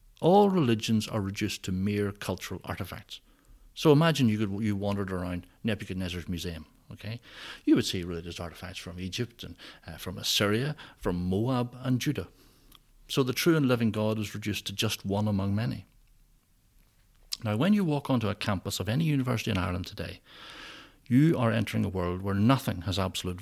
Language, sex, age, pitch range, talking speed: English, male, 60-79, 95-130 Hz, 175 wpm